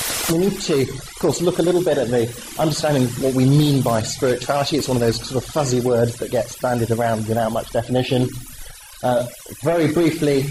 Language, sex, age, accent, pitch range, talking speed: English, male, 30-49, British, 120-170 Hz, 205 wpm